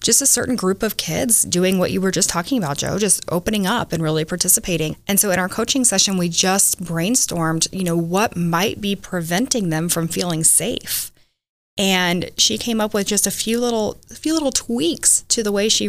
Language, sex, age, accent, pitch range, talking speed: English, female, 20-39, American, 175-215 Hz, 210 wpm